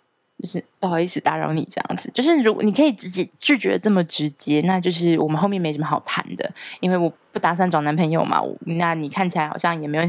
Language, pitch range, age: Chinese, 165-200 Hz, 20-39